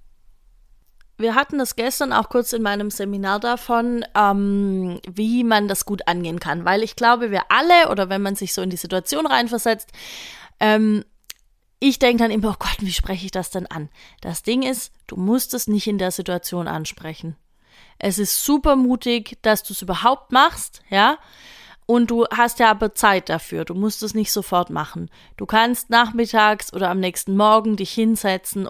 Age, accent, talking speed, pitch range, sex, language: 30-49, German, 180 wpm, 190-235 Hz, female, German